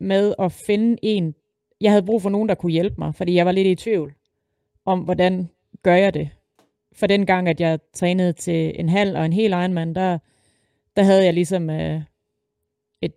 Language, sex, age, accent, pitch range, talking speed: Danish, female, 30-49, native, 160-190 Hz, 205 wpm